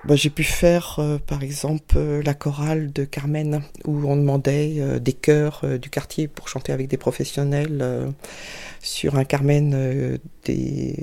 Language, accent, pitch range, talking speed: French, French, 130-155 Hz, 175 wpm